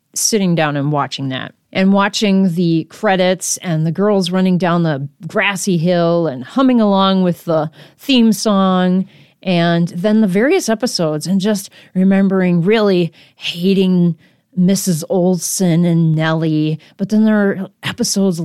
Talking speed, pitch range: 140 wpm, 170-220 Hz